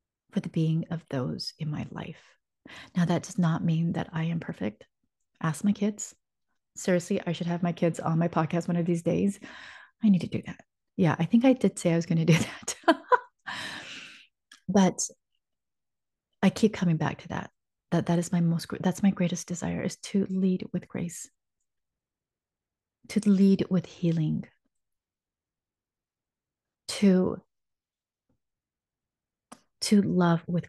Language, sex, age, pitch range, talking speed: English, female, 30-49, 165-200 Hz, 155 wpm